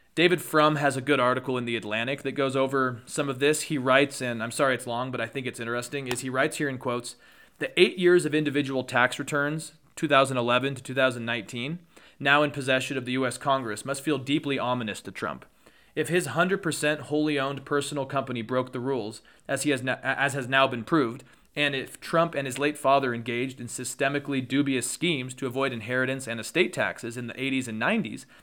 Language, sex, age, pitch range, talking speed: English, male, 30-49, 125-145 Hz, 200 wpm